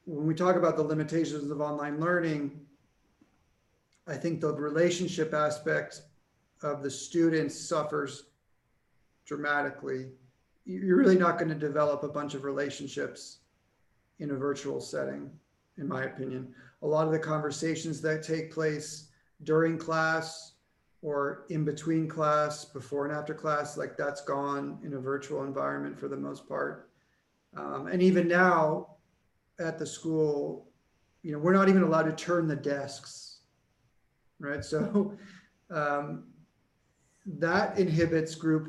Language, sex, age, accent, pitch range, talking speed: English, male, 40-59, American, 140-160 Hz, 135 wpm